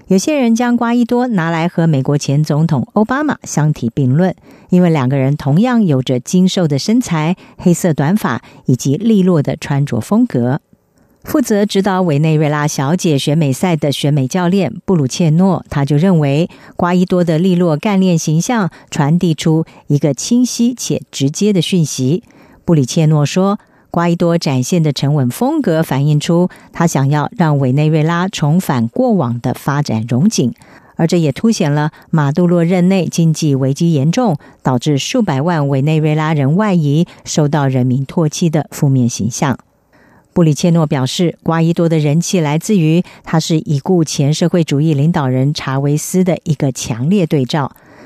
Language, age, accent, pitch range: German, 50-69, American, 145-185 Hz